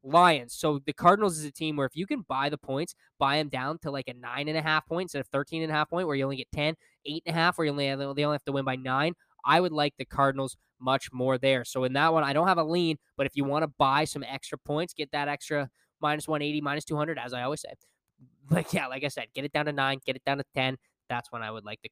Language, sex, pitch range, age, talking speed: English, male, 135-155 Hz, 10-29, 305 wpm